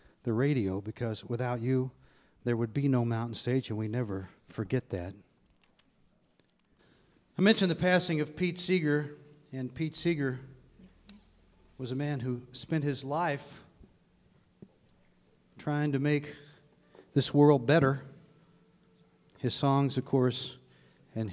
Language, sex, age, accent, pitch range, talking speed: English, male, 40-59, American, 120-145 Hz, 125 wpm